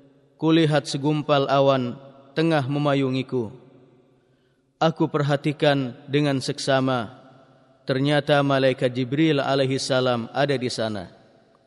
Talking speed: 95 wpm